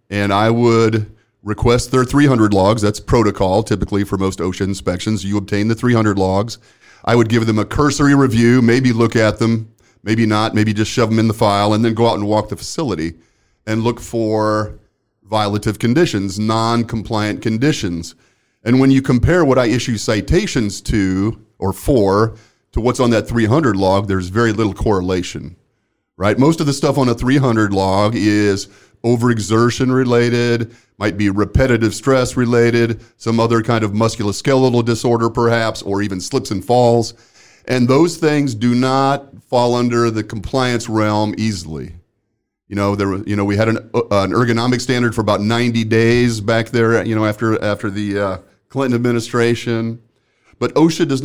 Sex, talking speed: male, 170 wpm